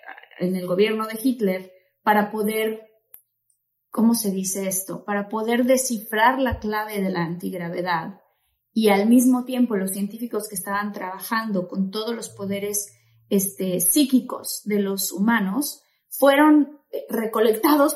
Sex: female